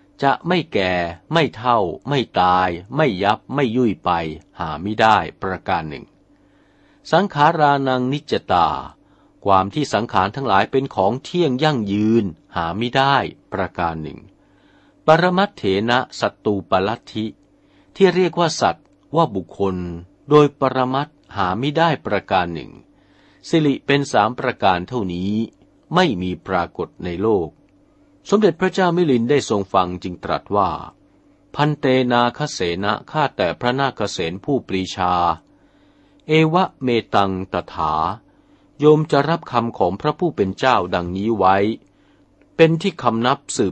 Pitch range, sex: 95-145 Hz, male